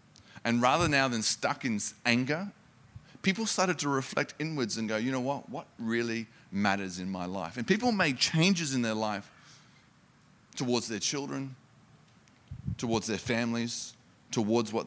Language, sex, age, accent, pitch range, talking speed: English, male, 30-49, Australian, 110-140 Hz, 155 wpm